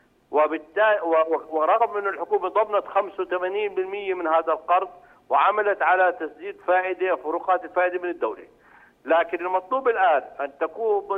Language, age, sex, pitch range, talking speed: Arabic, 50-69, male, 165-210 Hz, 120 wpm